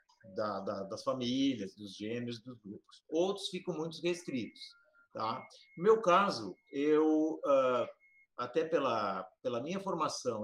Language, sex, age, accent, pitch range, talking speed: Portuguese, male, 50-69, Brazilian, 135-195 Hz, 130 wpm